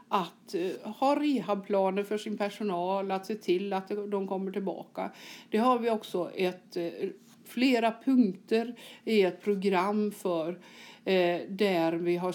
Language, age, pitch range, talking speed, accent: Swedish, 60-79, 185-235 Hz, 140 wpm, native